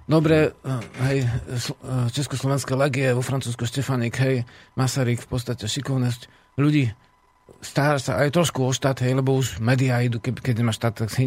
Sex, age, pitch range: male, 40-59, 120-145 Hz